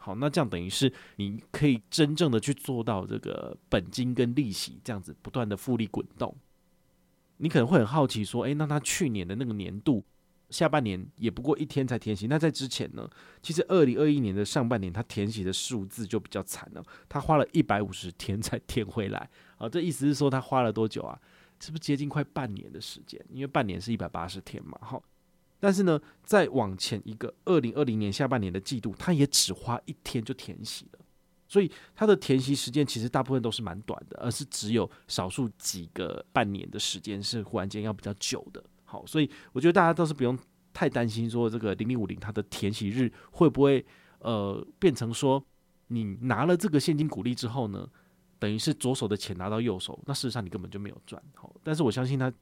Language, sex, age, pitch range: Chinese, male, 30-49, 105-145 Hz